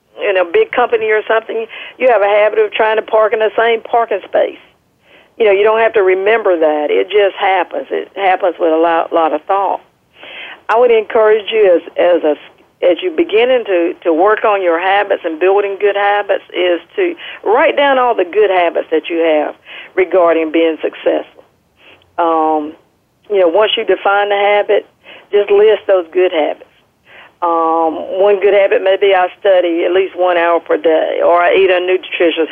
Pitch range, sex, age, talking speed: 175-255 Hz, female, 50-69, 190 wpm